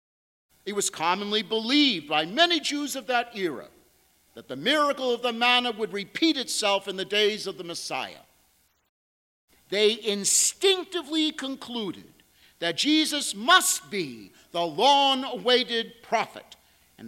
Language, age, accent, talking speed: English, 50-69, American, 125 wpm